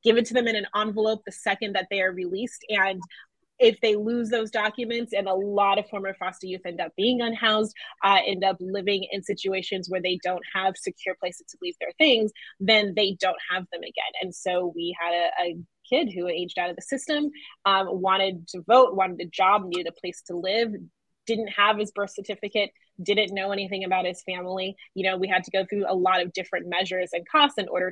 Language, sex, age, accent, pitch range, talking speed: English, female, 20-39, American, 180-215 Hz, 220 wpm